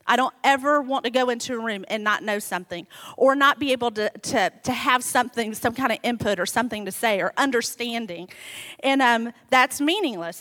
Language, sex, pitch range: English, female, 245-345 Hz